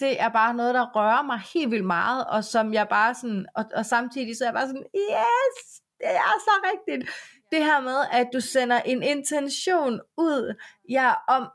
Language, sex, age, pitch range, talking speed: Danish, female, 30-49, 210-265 Hz, 205 wpm